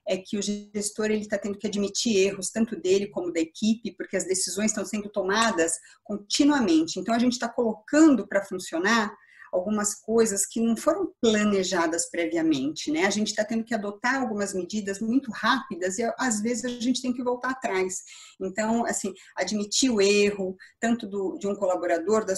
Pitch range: 195-235 Hz